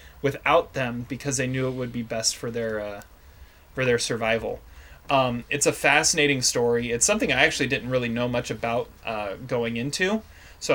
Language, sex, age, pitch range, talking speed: English, male, 30-49, 115-145 Hz, 185 wpm